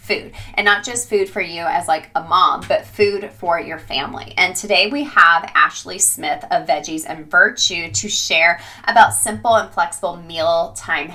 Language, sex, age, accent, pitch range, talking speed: English, female, 20-39, American, 165-215 Hz, 185 wpm